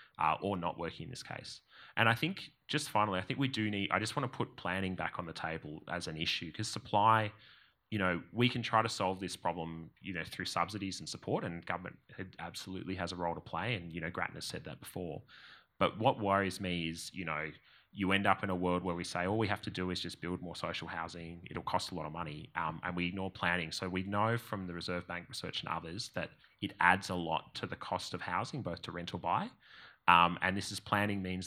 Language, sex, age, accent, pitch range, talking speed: English, male, 20-39, Australian, 85-105 Hz, 250 wpm